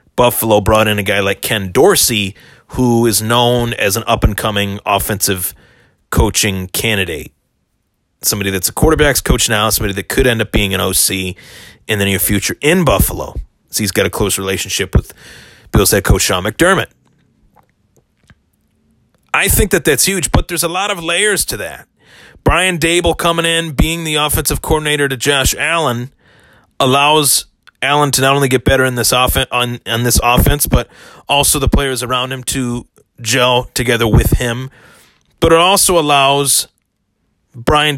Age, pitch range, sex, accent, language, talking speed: 30-49, 105-140 Hz, male, American, English, 165 wpm